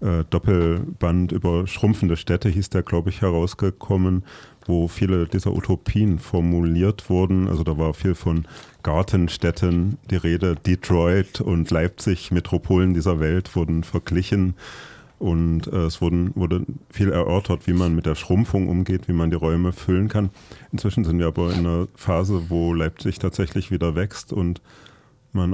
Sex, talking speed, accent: male, 150 wpm, German